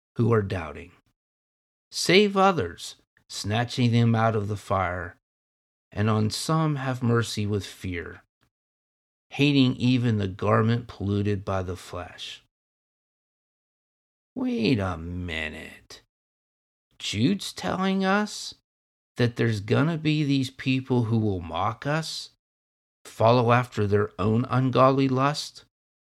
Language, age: English, 50-69